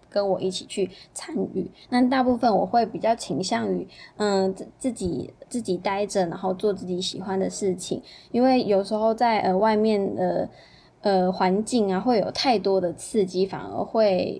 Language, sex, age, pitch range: Chinese, female, 10-29, 190-230 Hz